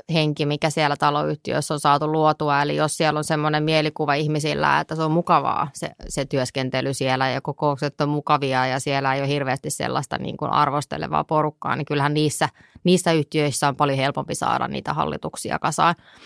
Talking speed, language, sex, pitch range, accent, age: 175 wpm, Finnish, female, 140-155 Hz, native, 20-39